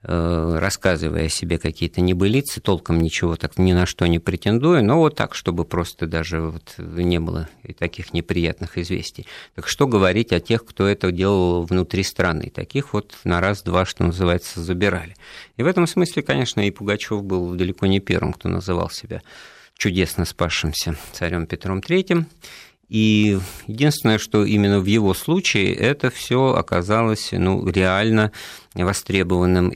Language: Russian